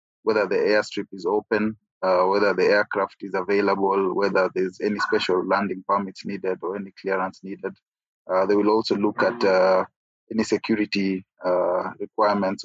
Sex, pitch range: male, 95-110 Hz